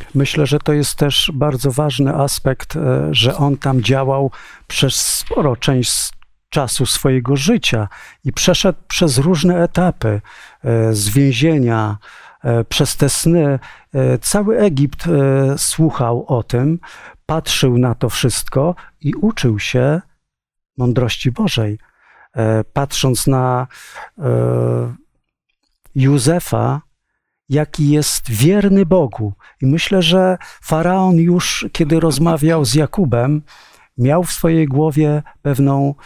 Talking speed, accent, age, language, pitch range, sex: 105 wpm, native, 50-69, Polish, 125-155 Hz, male